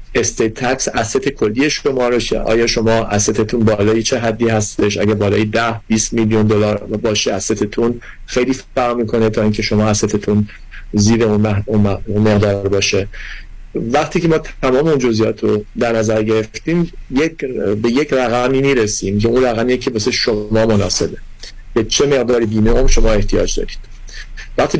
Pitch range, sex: 110-130 Hz, male